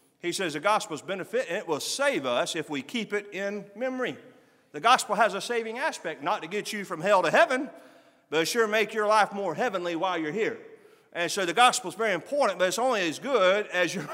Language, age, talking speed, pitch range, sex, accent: English, 40-59, 235 wpm, 190-250 Hz, male, American